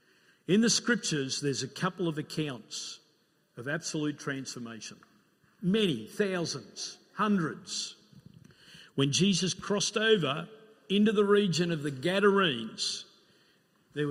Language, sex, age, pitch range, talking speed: English, male, 50-69, 145-205 Hz, 105 wpm